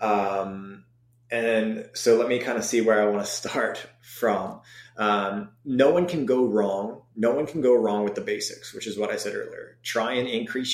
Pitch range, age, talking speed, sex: 105-125 Hz, 30-49, 205 wpm, male